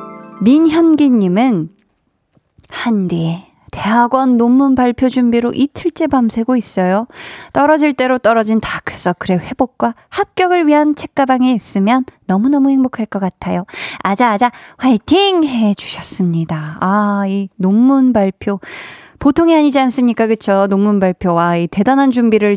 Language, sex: Korean, female